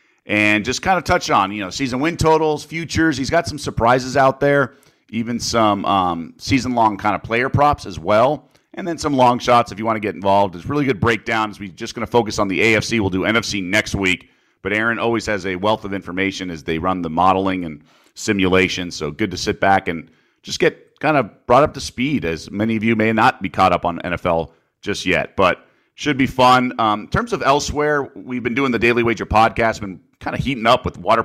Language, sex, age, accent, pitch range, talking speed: English, male, 40-59, American, 95-120 Hz, 230 wpm